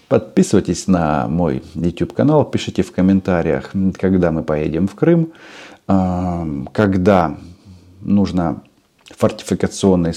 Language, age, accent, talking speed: Russian, 40-59, native, 90 wpm